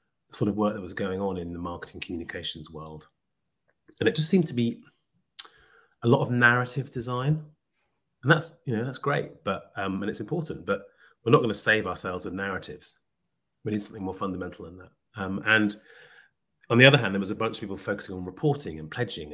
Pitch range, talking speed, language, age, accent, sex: 95-135 Hz, 210 wpm, English, 30-49, British, male